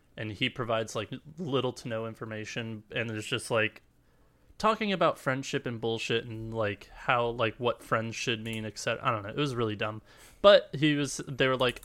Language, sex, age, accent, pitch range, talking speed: English, male, 20-39, American, 115-145 Hz, 200 wpm